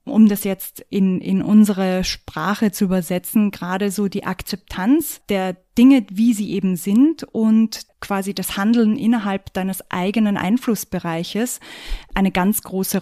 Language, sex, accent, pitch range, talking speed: German, female, German, 185-220 Hz, 140 wpm